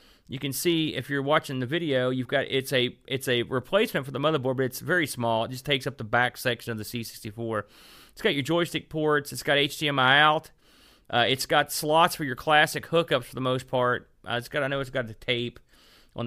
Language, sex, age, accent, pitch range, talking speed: English, male, 30-49, American, 120-145 Hz, 230 wpm